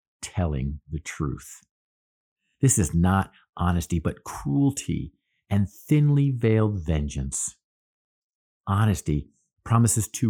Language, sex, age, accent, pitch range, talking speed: English, male, 50-69, American, 80-115 Hz, 95 wpm